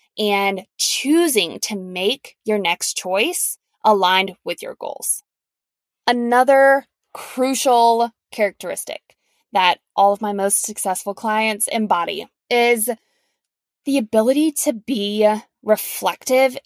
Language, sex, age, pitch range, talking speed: English, female, 20-39, 200-255 Hz, 100 wpm